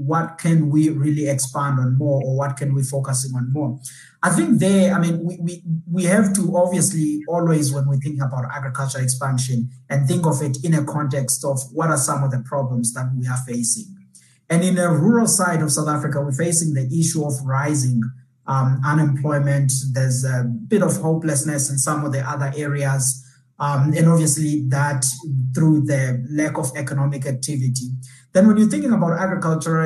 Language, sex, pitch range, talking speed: English, male, 135-160 Hz, 185 wpm